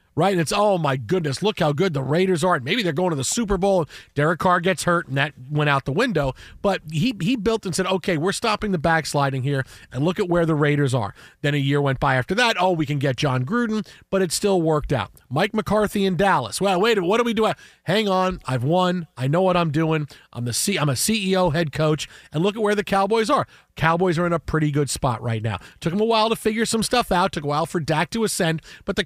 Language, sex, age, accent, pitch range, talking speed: English, male, 40-59, American, 145-195 Hz, 265 wpm